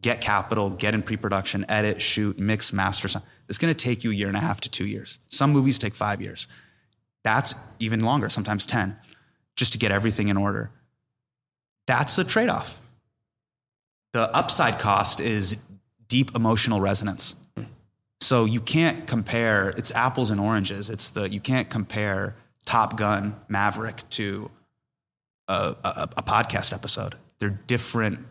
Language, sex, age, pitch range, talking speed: English, male, 30-49, 100-120 Hz, 155 wpm